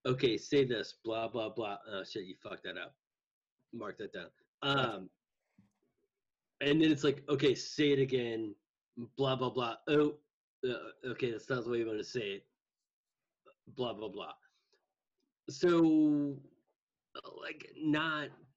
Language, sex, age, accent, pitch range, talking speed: English, male, 30-49, American, 115-160 Hz, 145 wpm